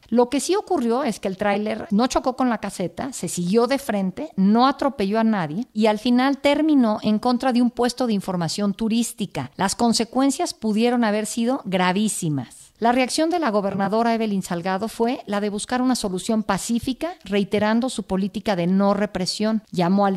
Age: 50-69